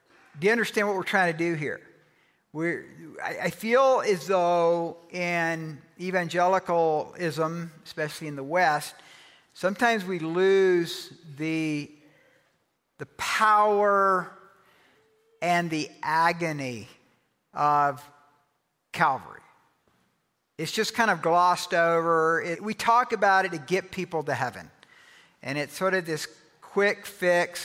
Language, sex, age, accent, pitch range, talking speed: English, male, 50-69, American, 150-180 Hz, 115 wpm